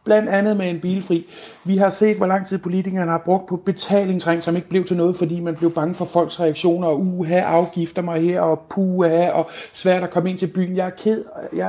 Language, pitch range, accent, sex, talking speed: Danish, 180-220 Hz, native, male, 240 wpm